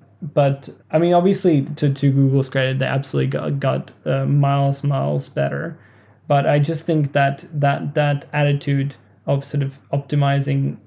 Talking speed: 155 wpm